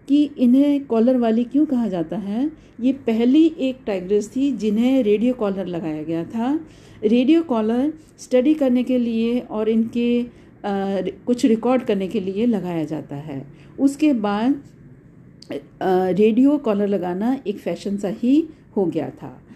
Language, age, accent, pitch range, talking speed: Hindi, 50-69, native, 205-275 Hz, 150 wpm